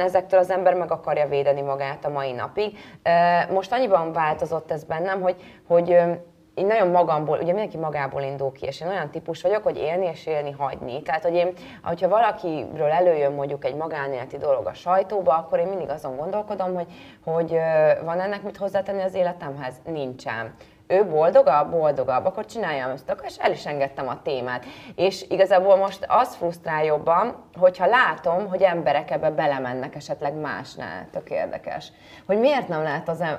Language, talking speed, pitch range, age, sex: Hungarian, 170 wpm, 145-190 Hz, 20-39, female